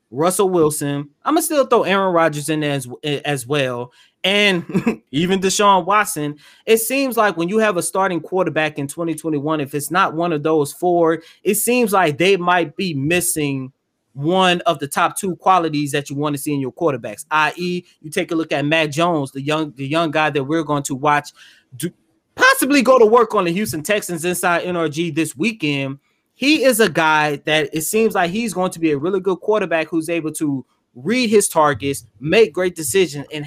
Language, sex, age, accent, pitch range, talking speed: English, male, 20-39, American, 155-220 Hz, 200 wpm